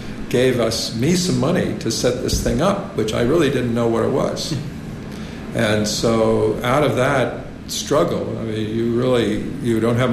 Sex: male